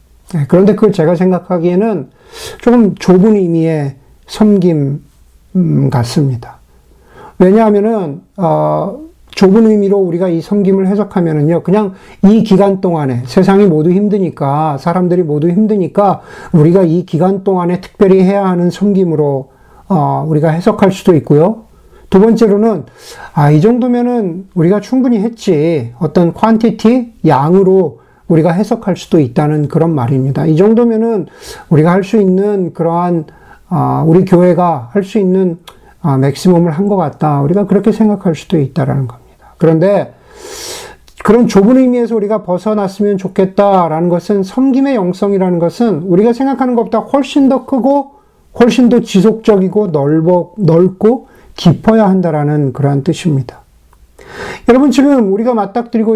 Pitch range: 160-215 Hz